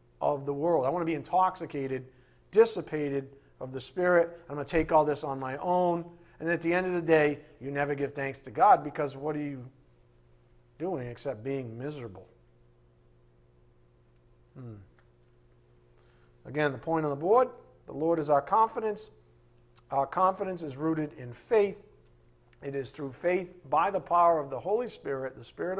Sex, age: male, 50-69